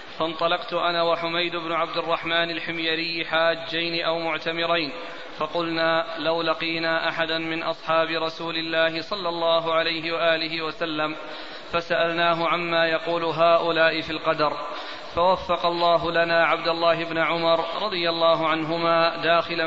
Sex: male